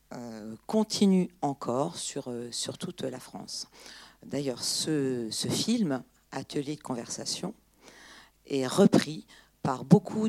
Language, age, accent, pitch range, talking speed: French, 50-69, French, 130-175 Hz, 105 wpm